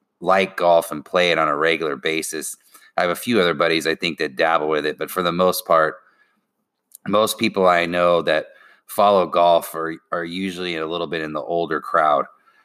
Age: 30-49